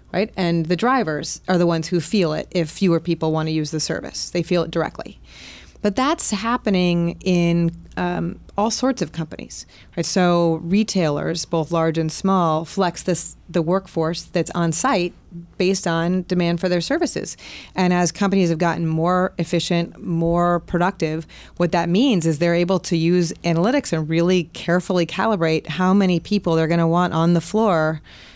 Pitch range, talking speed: 165-185 Hz, 175 wpm